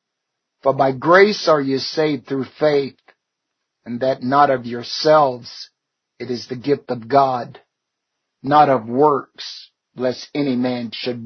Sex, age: male, 50-69